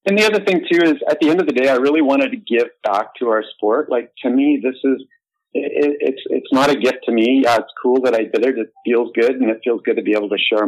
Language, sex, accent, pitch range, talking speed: English, male, American, 105-155 Hz, 300 wpm